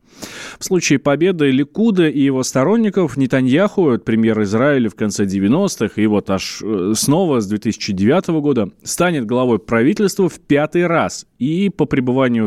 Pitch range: 115-150 Hz